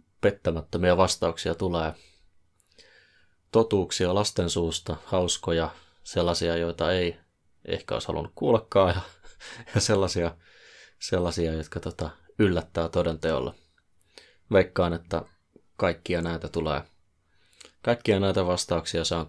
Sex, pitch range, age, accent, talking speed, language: male, 80-95 Hz, 20-39, native, 95 wpm, Finnish